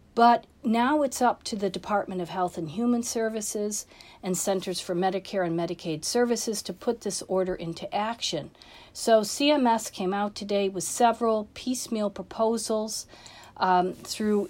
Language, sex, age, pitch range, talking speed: English, female, 50-69, 180-210 Hz, 150 wpm